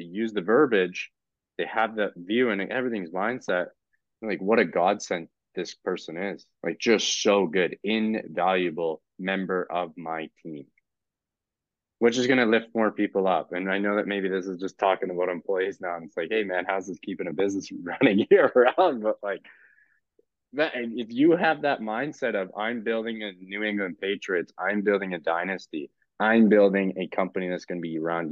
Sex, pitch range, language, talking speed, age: male, 90-105 Hz, English, 180 wpm, 20-39